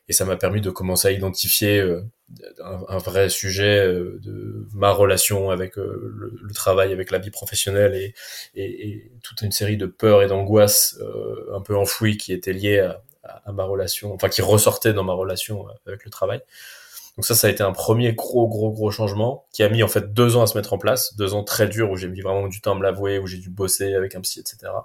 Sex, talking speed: male, 230 wpm